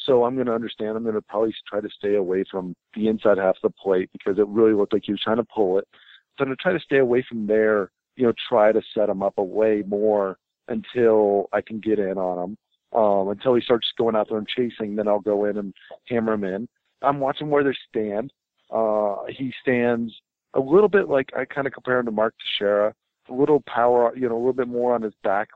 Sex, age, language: male, 40-59, English